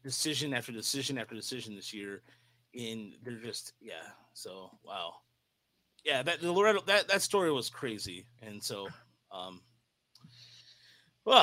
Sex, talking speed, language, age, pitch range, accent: male, 135 wpm, English, 30-49, 120-155 Hz, American